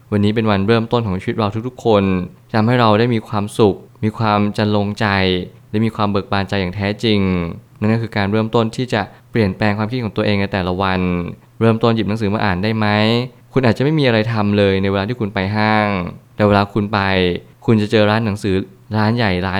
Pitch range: 100-120 Hz